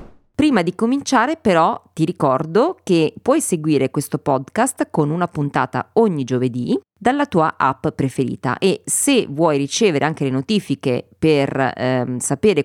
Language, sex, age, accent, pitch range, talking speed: Italian, female, 30-49, native, 135-185 Hz, 140 wpm